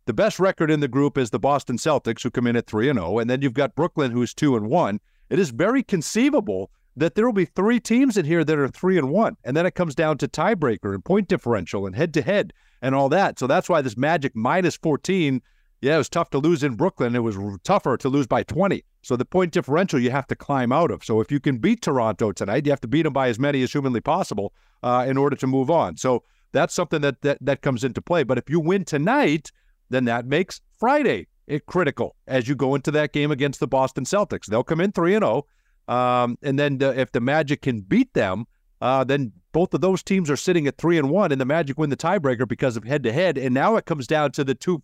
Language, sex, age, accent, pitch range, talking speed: English, male, 50-69, American, 130-175 Hz, 250 wpm